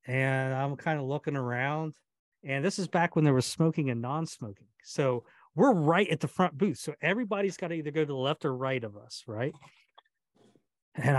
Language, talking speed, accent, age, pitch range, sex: English, 205 wpm, American, 40-59, 120-180 Hz, male